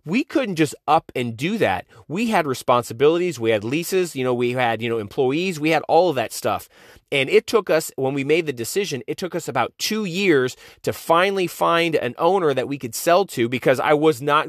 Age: 30-49